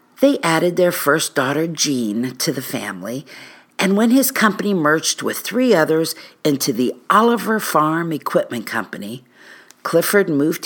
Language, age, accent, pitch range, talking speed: English, 50-69, American, 125-170 Hz, 140 wpm